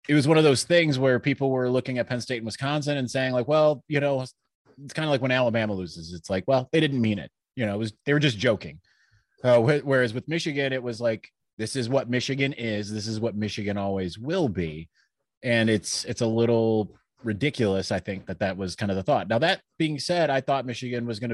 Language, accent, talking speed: English, American, 240 wpm